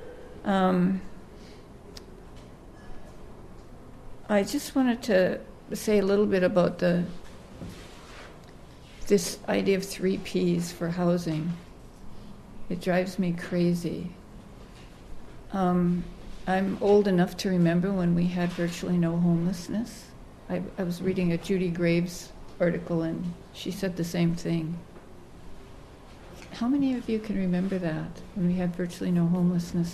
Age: 60-79